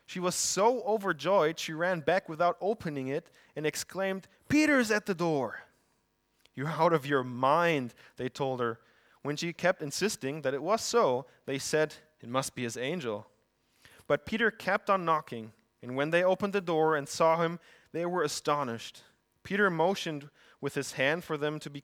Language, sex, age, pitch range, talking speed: German, male, 20-39, 135-175 Hz, 180 wpm